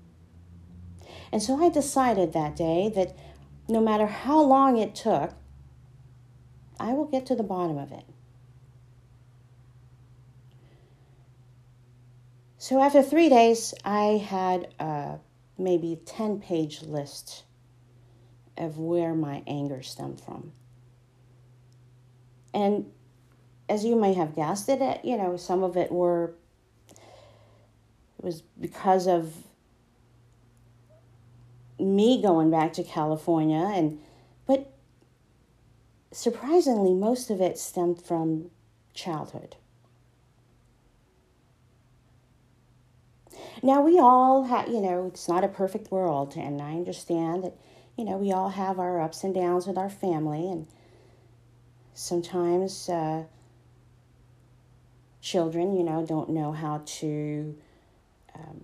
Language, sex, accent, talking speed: English, female, American, 110 wpm